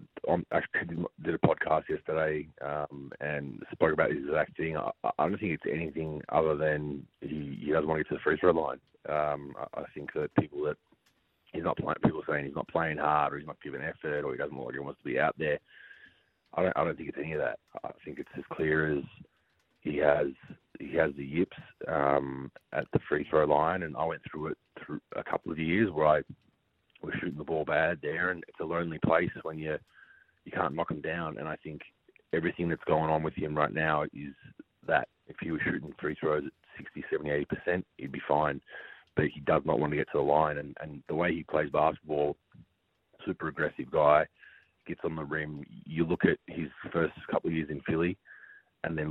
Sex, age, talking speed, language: male, 30-49, 220 wpm, English